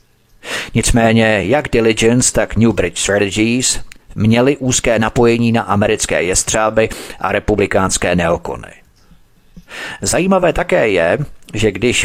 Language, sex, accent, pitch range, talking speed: Czech, male, native, 100-120 Hz, 105 wpm